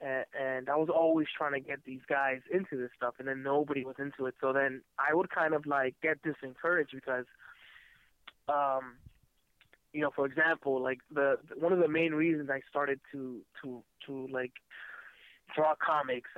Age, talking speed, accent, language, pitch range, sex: 20-39, 175 wpm, American, English, 135-155 Hz, male